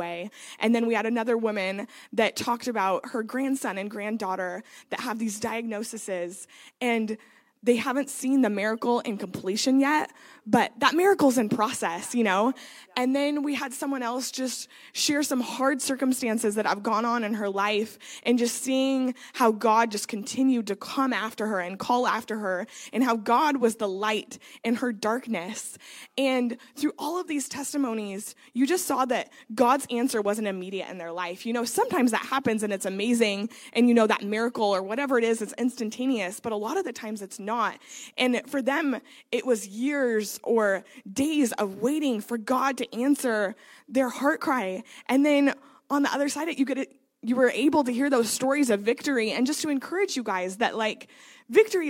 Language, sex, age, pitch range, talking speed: English, female, 20-39, 215-265 Hz, 190 wpm